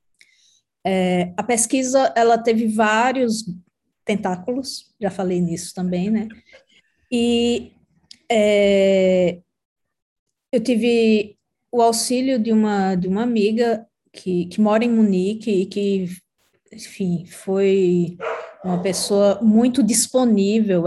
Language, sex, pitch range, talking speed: Portuguese, female, 180-220 Hz, 105 wpm